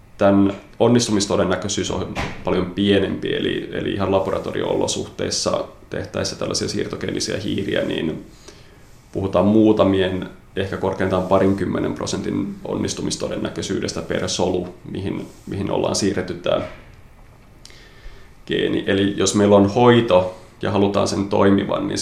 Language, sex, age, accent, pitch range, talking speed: Finnish, male, 30-49, native, 95-110 Hz, 105 wpm